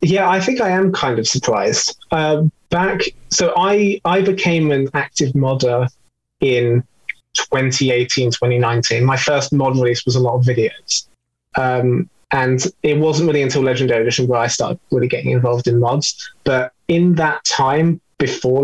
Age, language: 20-39, English